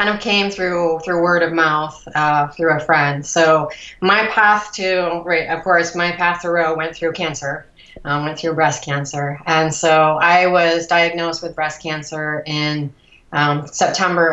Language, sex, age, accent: English, female, 30-49, American